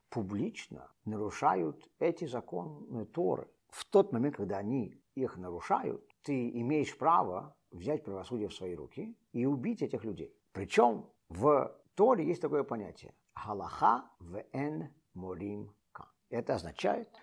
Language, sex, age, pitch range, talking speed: Russian, male, 50-69, 130-215 Hz, 125 wpm